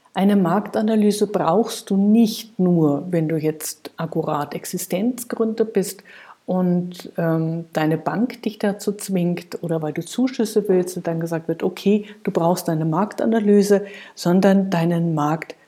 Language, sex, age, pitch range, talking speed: German, female, 50-69, 170-215 Hz, 140 wpm